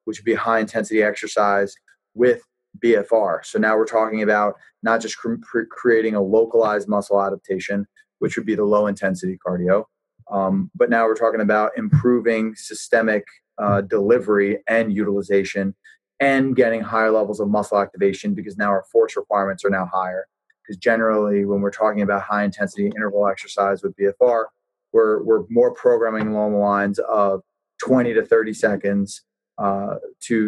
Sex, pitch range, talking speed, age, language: male, 105-125 Hz, 160 wpm, 20-39, English